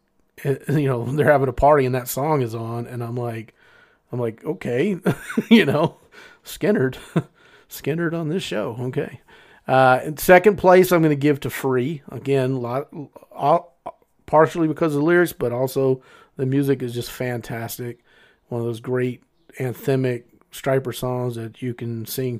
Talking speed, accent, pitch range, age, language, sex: 165 wpm, American, 120-140 Hz, 30-49, English, male